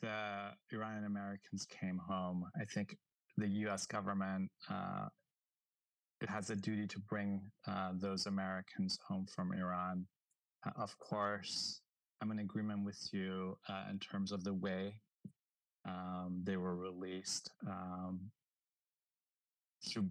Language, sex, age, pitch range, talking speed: English, male, 20-39, 95-105 Hz, 130 wpm